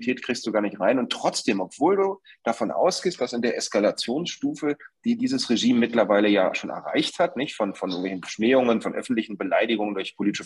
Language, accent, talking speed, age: German, German, 185 wpm, 30-49